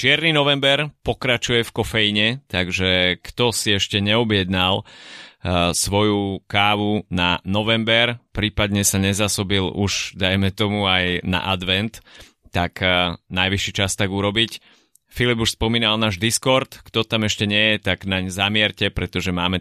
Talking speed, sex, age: 140 wpm, male, 30-49